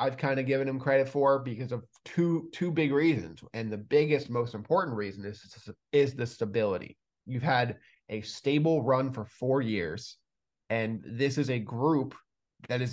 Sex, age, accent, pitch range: male, 20-39, American, 110-135 Hz